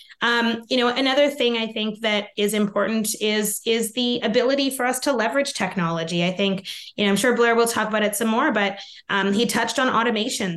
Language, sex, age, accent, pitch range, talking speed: English, female, 20-39, American, 200-230 Hz, 215 wpm